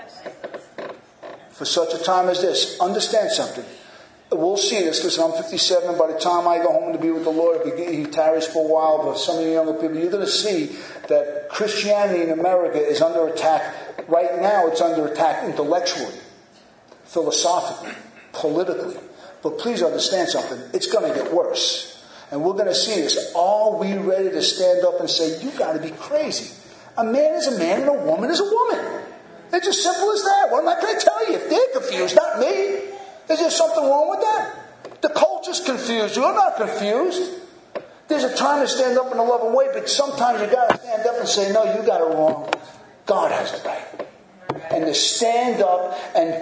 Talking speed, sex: 200 wpm, male